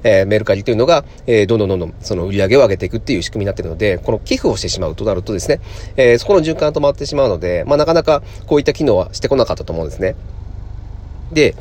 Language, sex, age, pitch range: Japanese, male, 40-59, 95-150 Hz